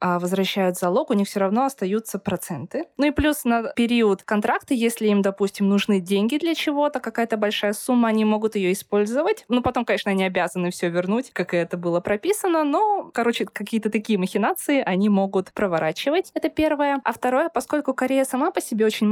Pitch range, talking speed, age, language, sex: 195-270 Hz, 180 wpm, 20-39, Russian, female